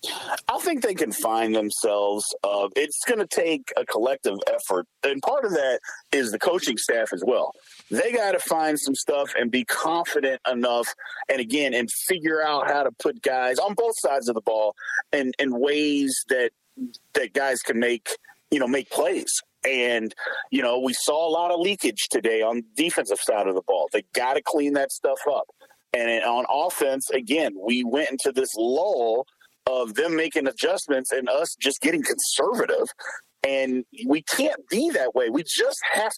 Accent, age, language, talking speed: American, 40-59, English, 185 wpm